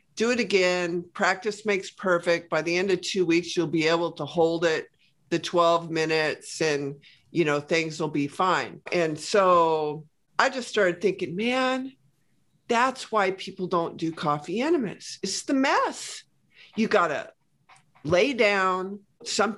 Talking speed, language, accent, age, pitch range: 155 wpm, English, American, 50-69, 160-205 Hz